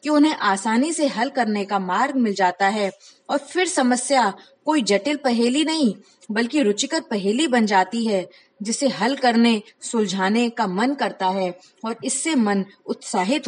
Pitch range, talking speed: 200-270 Hz, 160 wpm